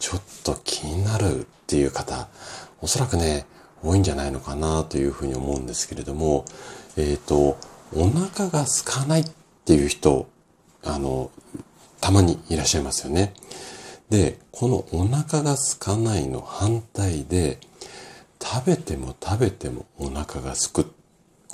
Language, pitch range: Japanese, 70-100 Hz